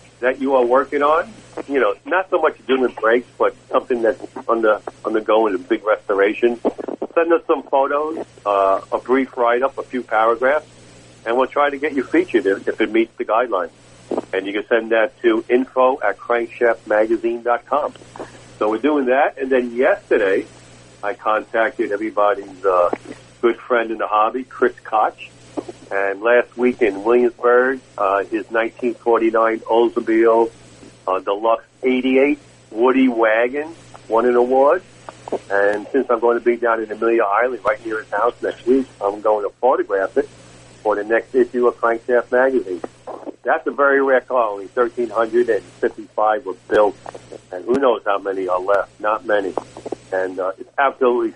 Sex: male